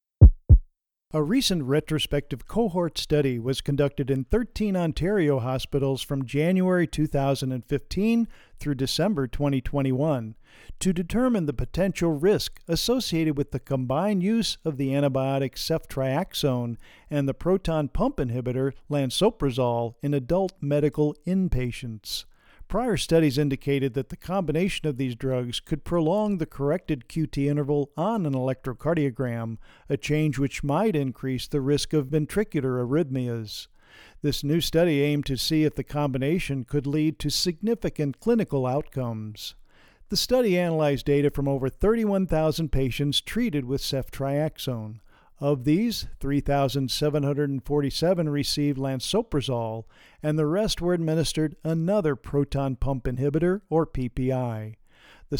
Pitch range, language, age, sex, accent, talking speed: 135-165 Hz, English, 50-69, male, American, 120 wpm